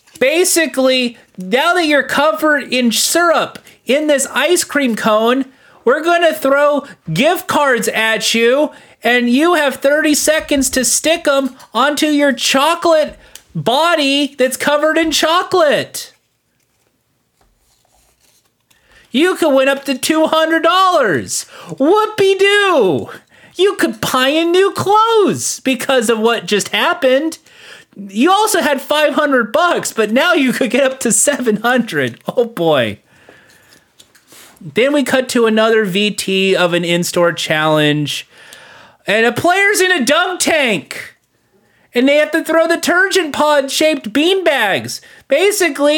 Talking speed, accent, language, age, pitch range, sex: 130 wpm, American, English, 30-49, 250-330 Hz, male